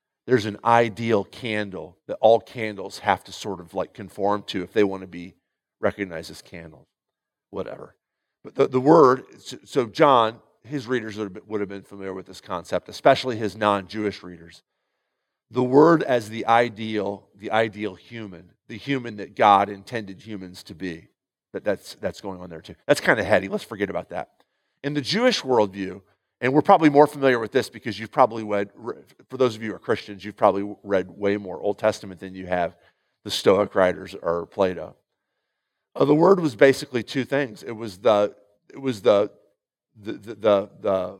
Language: English